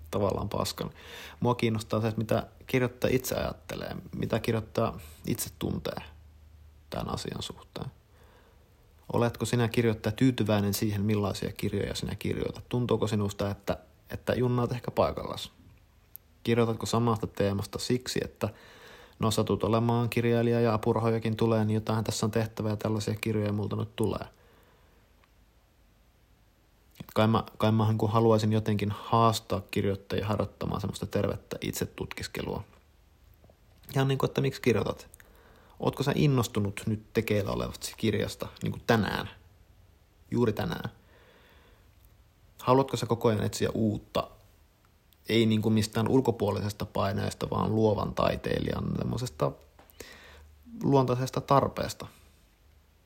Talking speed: 115 wpm